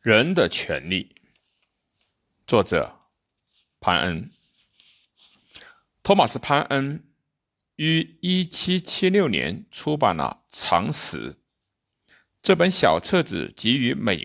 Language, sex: Chinese, male